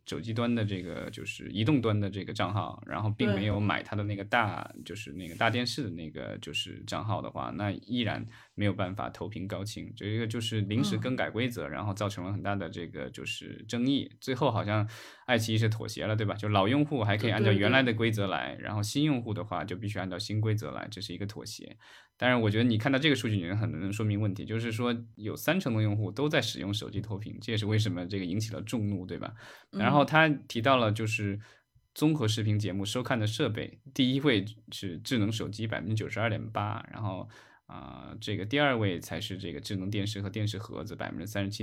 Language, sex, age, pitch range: Chinese, male, 20-39, 100-115 Hz